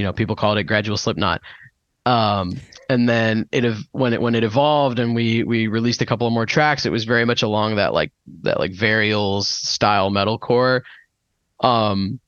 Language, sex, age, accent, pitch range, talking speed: English, male, 20-39, American, 110-130 Hz, 190 wpm